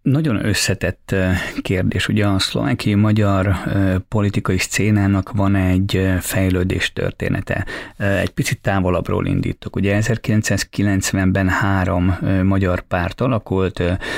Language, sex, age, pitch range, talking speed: Hungarian, male, 30-49, 90-100 Hz, 95 wpm